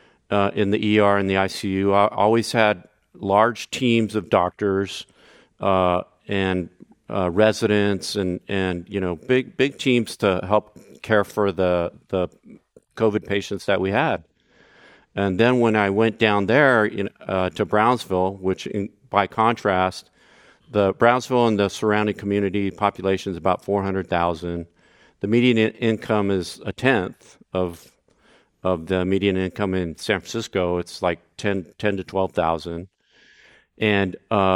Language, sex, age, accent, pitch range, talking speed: English, male, 50-69, American, 95-105 Hz, 150 wpm